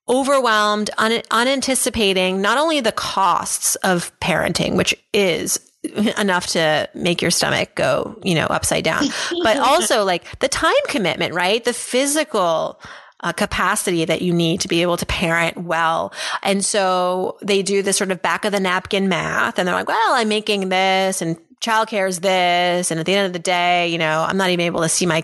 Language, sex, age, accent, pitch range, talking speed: English, female, 30-49, American, 180-225 Hz, 190 wpm